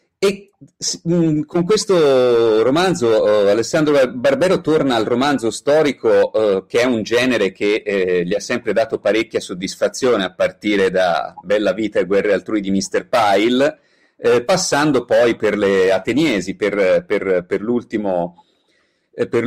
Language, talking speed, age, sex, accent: Italian, 135 wpm, 40-59, male, native